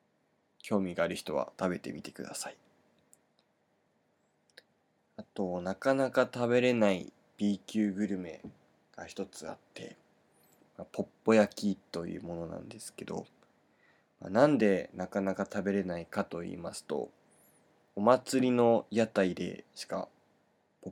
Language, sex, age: Japanese, male, 20-39